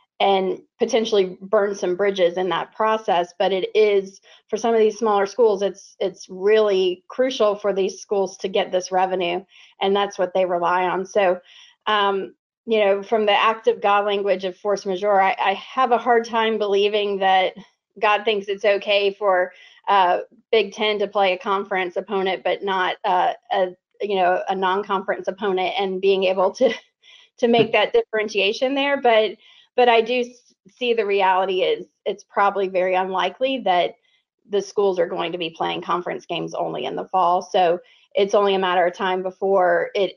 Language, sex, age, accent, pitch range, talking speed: English, female, 30-49, American, 185-215 Hz, 180 wpm